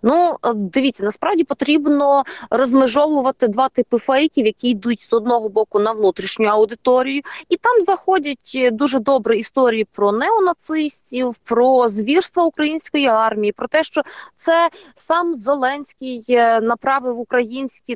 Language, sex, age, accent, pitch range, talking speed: Ukrainian, female, 20-39, native, 225-285 Hz, 120 wpm